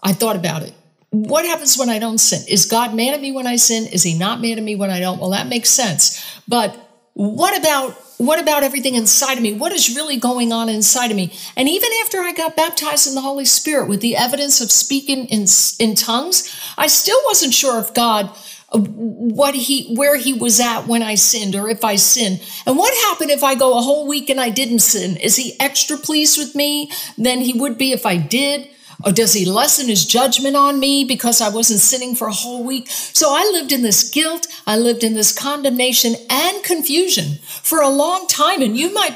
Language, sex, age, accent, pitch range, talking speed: English, female, 50-69, American, 215-285 Hz, 225 wpm